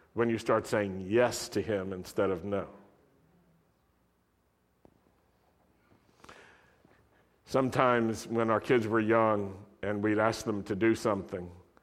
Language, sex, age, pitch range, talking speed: English, male, 50-69, 105-130 Hz, 115 wpm